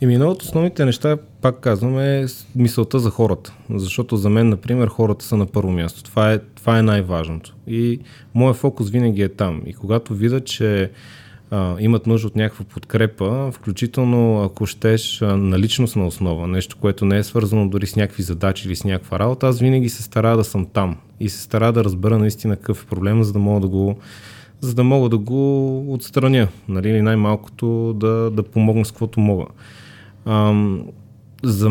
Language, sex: Bulgarian, male